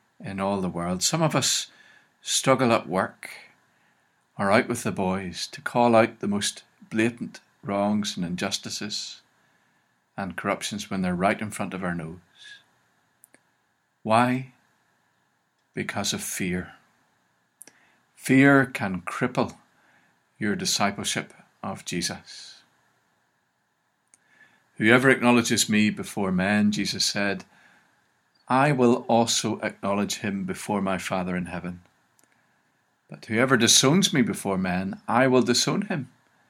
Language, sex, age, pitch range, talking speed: English, male, 50-69, 95-125 Hz, 120 wpm